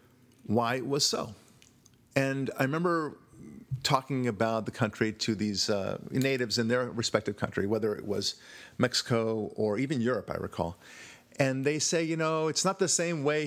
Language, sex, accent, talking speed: English, male, American, 170 wpm